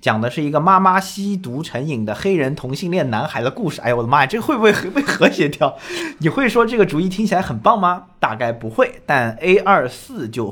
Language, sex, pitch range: Chinese, male, 110-170 Hz